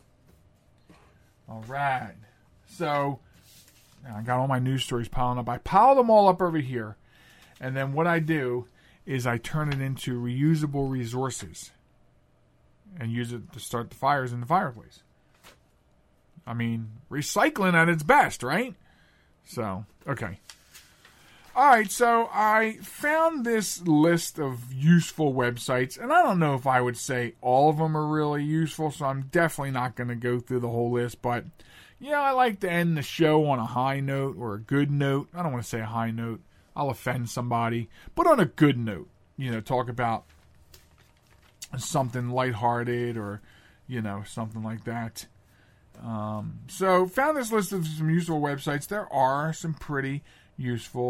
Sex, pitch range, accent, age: male, 115-155 Hz, American, 40-59